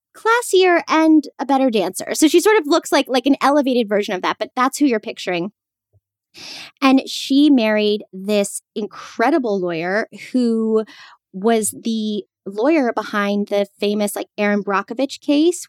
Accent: American